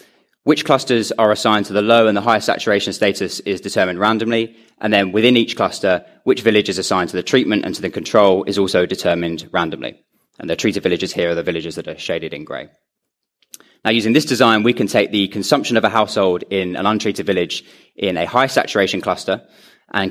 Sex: male